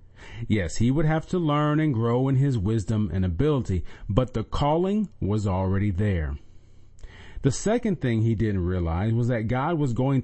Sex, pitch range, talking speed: male, 95-130 Hz, 175 wpm